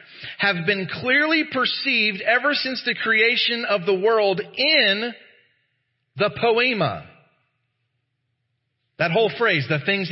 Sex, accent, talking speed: male, American, 115 wpm